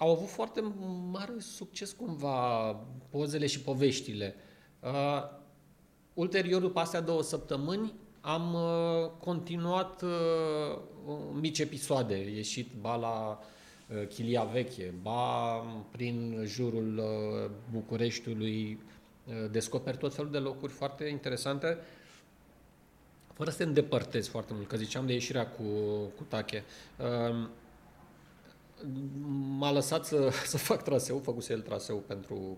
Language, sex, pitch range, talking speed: Romanian, male, 115-165 Hz, 115 wpm